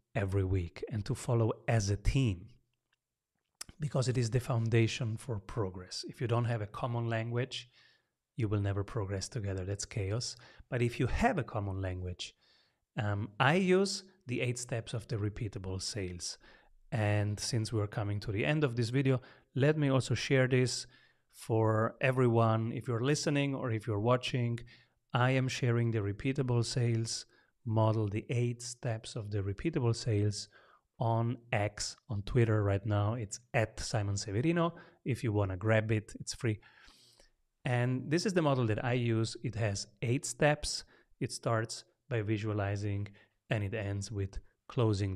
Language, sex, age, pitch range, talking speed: English, male, 30-49, 105-125 Hz, 165 wpm